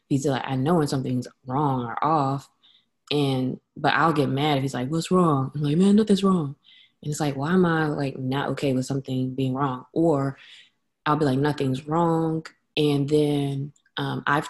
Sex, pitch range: female, 140-195 Hz